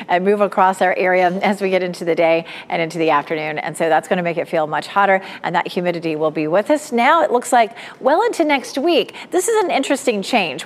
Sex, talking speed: female, 255 wpm